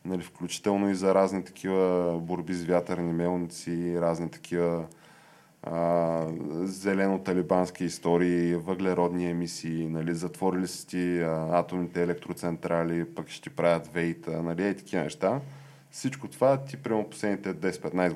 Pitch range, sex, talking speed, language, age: 85-105 Hz, male, 125 wpm, Bulgarian, 20-39